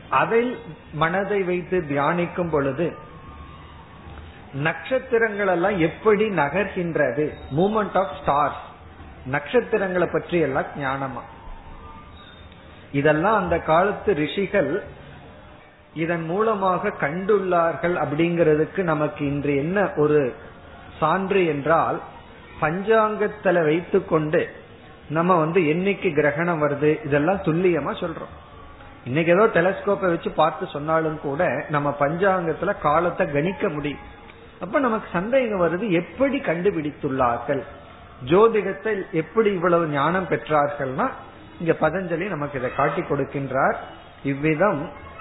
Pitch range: 145-195 Hz